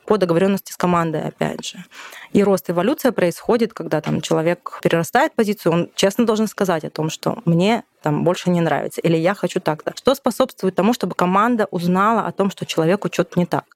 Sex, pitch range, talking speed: female, 170-205 Hz, 190 wpm